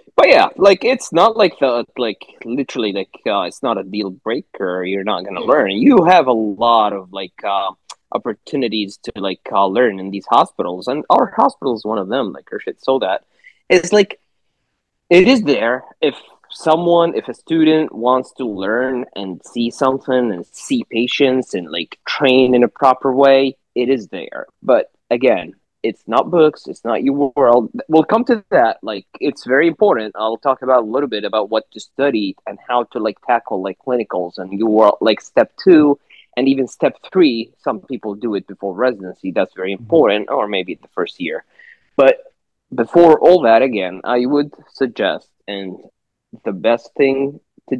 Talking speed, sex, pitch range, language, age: 180 wpm, male, 110-155 Hz, English, 20-39